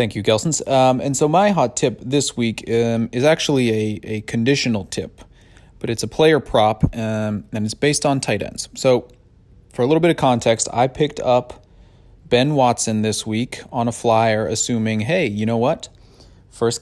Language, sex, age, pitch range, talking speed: English, male, 30-49, 105-125 Hz, 190 wpm